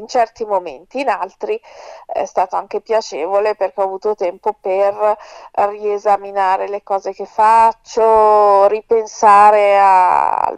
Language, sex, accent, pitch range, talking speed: Italian, female, native, 200-245 Hz, 120 wpm